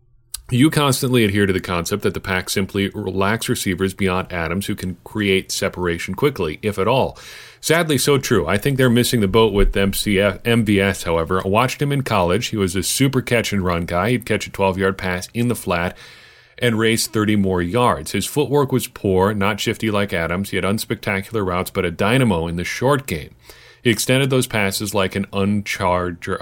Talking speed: 190 wpm